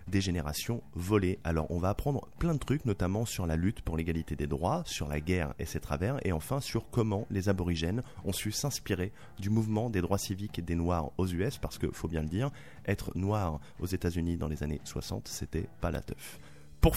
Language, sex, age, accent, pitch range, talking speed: French, male, 30-49, French, 85-110 Hz, 225 wpm